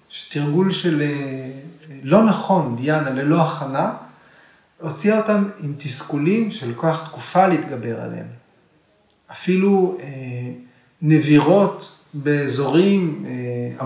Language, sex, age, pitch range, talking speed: Hebrew, male, 30-49, 140-195 Hz, 90 wpm